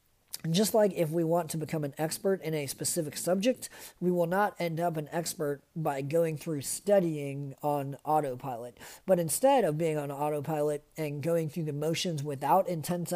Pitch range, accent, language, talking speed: 150-185 Hz, American, English, 180 wpm